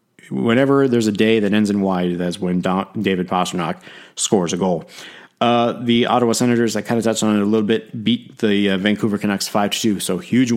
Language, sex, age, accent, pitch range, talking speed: English, male, 30-49, American, 95-110 Hz, 215 wpm